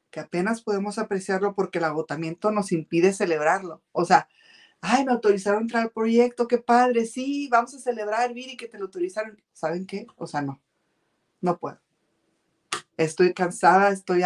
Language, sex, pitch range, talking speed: Spanish, female, 165-210 Hz, 165 wpm